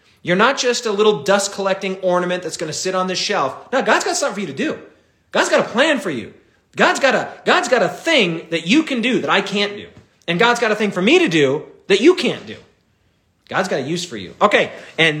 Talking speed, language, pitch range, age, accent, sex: 255 wpm, English, 150-205 Hz, 30-49, American, male